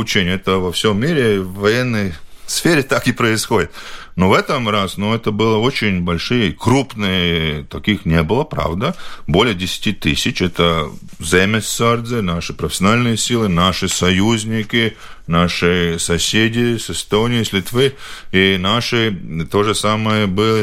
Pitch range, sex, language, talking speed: 85-110 Hz, male, Russian, 130 wpm